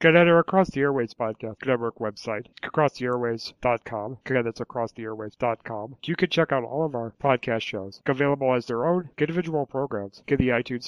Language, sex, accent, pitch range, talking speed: English, male, American, 110-150 Hz, 175 wpm